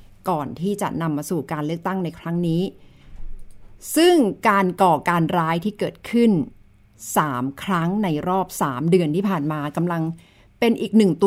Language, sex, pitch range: Thai, female, 150-200 Hz